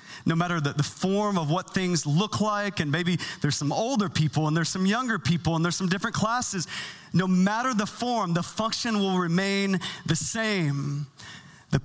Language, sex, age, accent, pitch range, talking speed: English, male, 30-49, American, 155-215 Hz, 185 wpm